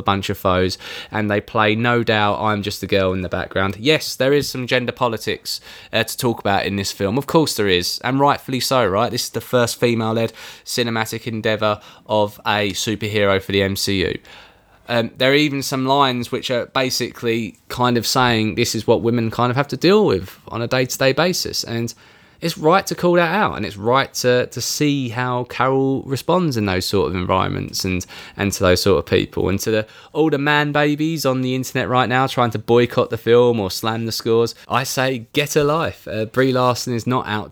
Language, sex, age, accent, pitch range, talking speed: English, male, 20-39, British, 105-130 Hz, 220 wpm